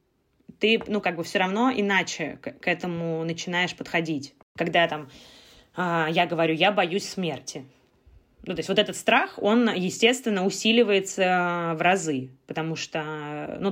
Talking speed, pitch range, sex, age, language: 140 wpm, 175-220 Hz, female, 20-39, Russian